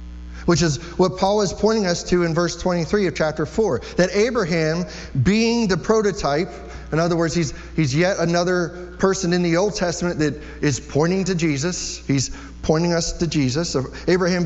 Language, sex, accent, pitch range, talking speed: English, male, American, 130-180 Hz, 180 wpm